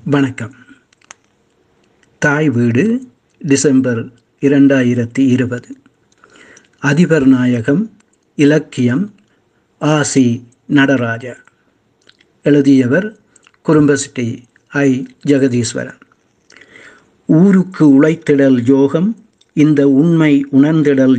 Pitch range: 135-160 Hz